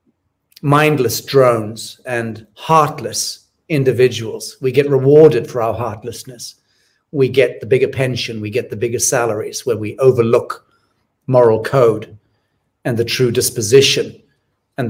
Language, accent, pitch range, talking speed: English, British, 120-140 Hz, 125 wpm